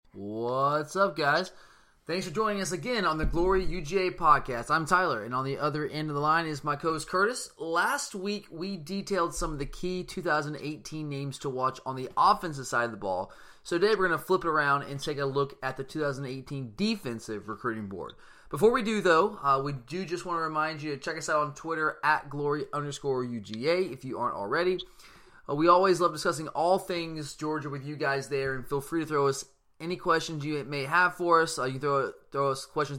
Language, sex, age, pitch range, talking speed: English, male, 20-39, 135-170 Hz, 220 wpm